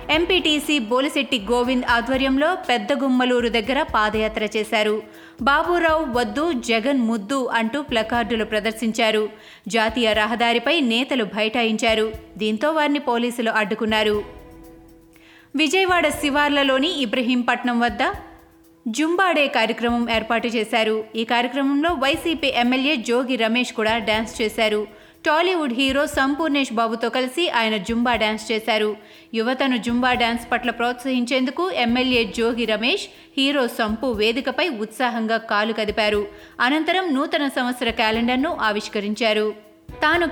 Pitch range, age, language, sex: 225-285 Hz, 30-49, Telugu, female